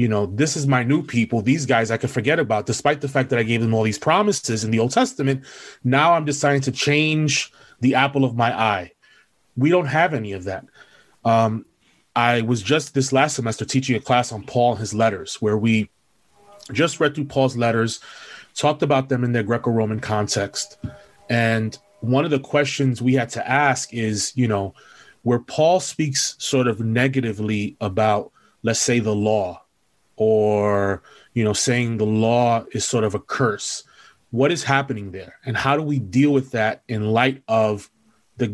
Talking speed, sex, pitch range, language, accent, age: 190 wpm, male, 110-135 Hz, English, American, 30-49